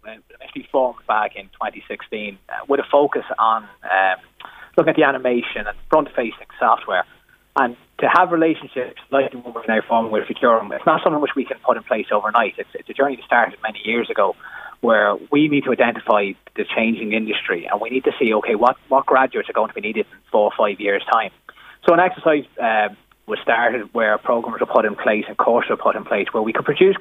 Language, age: English, 30-49